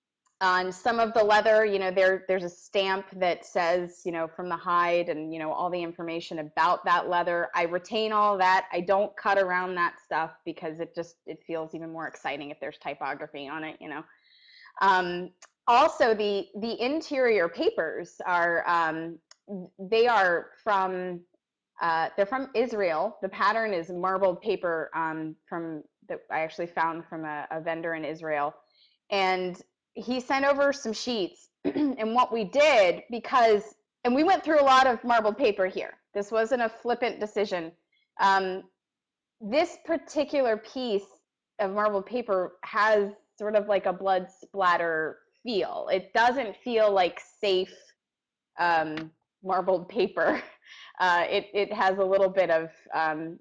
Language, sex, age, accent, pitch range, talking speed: English, female, 20-39, American, 170-220 Hz, 160 wpm